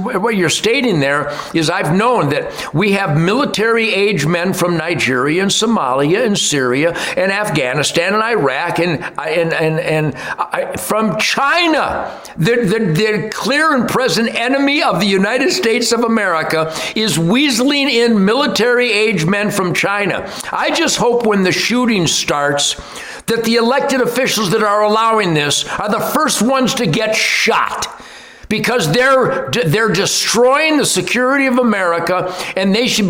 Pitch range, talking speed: 175-230 Hz, 150 wpm